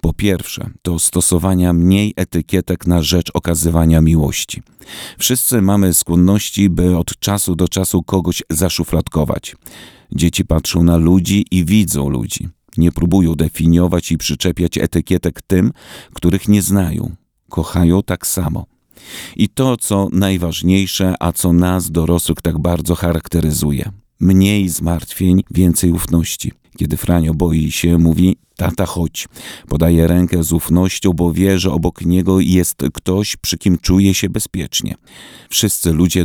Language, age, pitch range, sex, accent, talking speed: Polish, 40-59, 85-95 Hz, male, native, 130 wpm